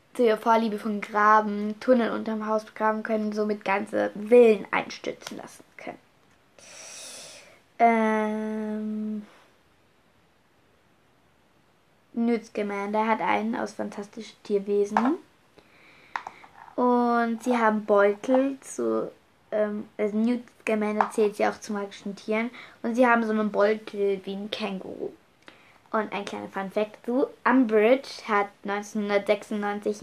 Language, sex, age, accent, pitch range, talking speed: German, female, 20-39, German, 205-225 Hz, 105 wpm